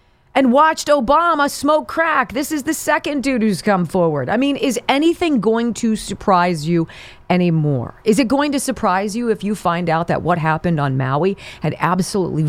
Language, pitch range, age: English, 145-205 Hz, 40-59